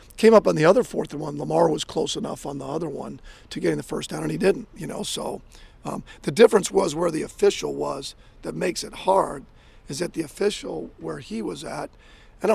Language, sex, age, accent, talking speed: English, male, 40-59, American, 235 wpm